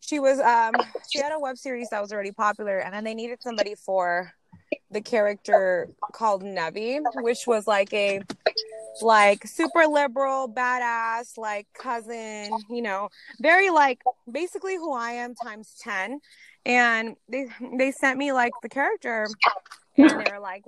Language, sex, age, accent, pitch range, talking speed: English, female, 20-39, American, 195-255 Hz, 155 wpm